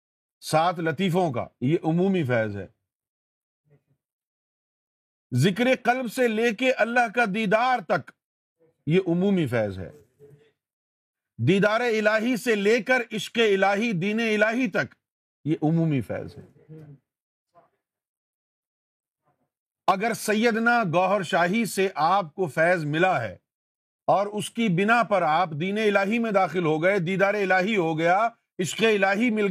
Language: Urdu